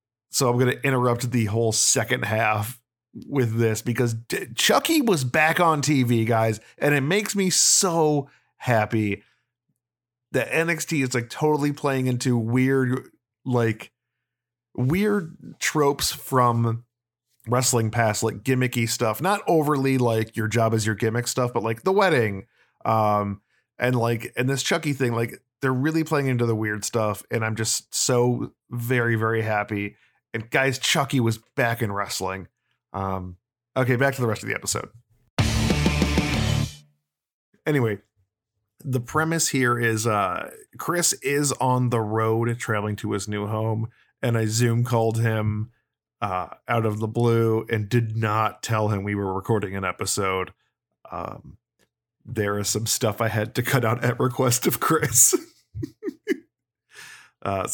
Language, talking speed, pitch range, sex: English, 150 wpm, 110-130 Hz, male